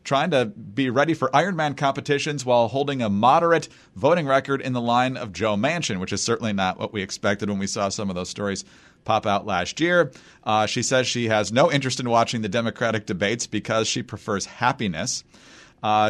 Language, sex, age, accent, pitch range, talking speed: English, male, 40-59, American, 100-130 Hz, 200 wpm